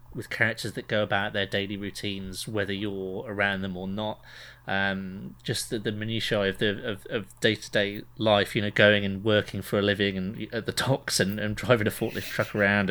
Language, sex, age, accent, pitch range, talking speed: English, male, 30-49, British, 100-120 Hz, 210 wpm